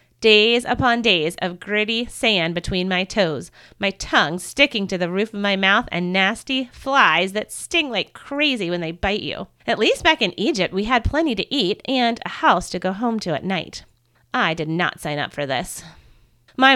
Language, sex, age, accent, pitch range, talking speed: English, female, 30-49, American, 180-255 Hz, 200 wpm